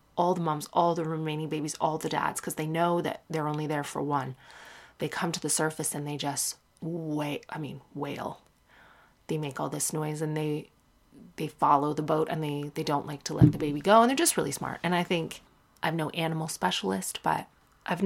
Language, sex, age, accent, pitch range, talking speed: English, female, 30-49, American, 155-190 Hz, 220 wpm